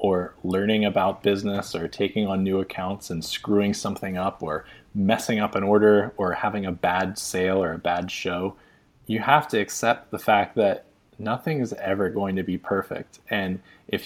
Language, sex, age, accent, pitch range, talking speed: English, male, 20-39, American, 95-105 Hz, 185 wpm